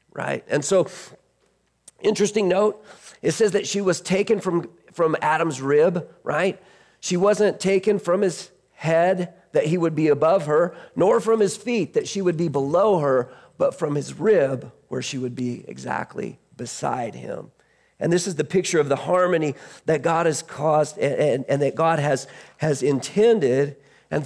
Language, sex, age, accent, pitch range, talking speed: English, male, 40-59, American, 135-185 Hz, 175 wpm